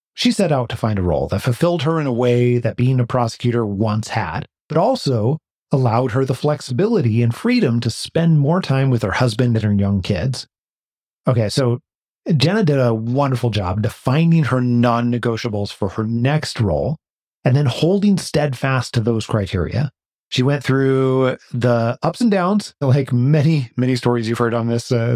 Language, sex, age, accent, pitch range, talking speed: English, male, 30-49, American, 115-145 Hz, 180 wpm